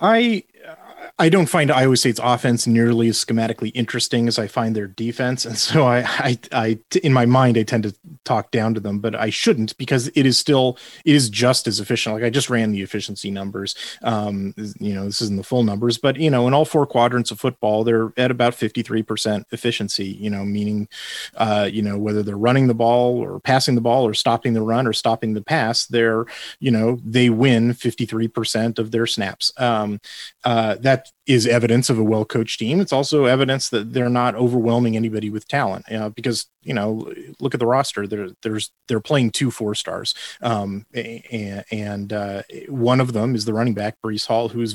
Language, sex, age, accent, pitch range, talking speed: English, male, 30-49, American, 110-125 Hz, 205 wpm